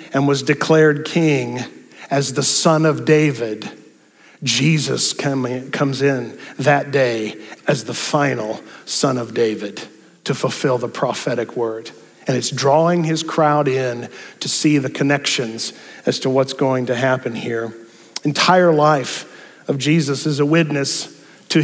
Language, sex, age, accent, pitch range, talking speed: English, male, 50-69, American, 140-165 Hz, 140 wpm